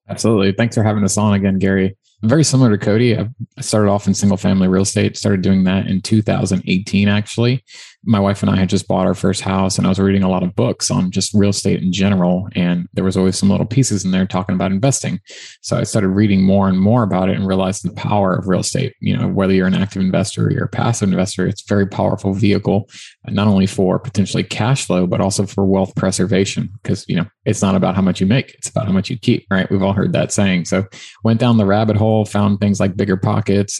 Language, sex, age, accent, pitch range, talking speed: English, male, 20-39, American, 95-110 Hz, 245 wpm